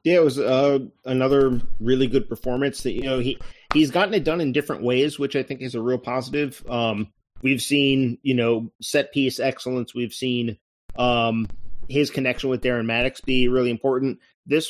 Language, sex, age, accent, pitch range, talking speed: English, male, 30-49, American, 120-135 Hz, 190 wpm